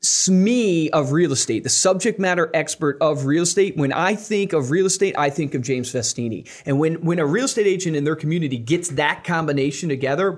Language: English